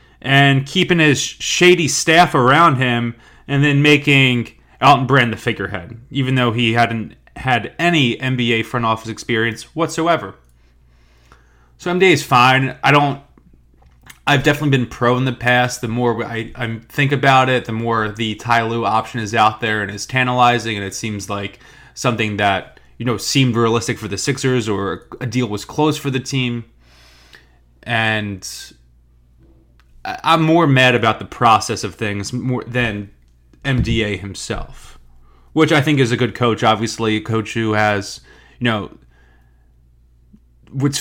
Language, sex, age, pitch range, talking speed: English, male, 20-39, 100-125 Hz, 155 wpm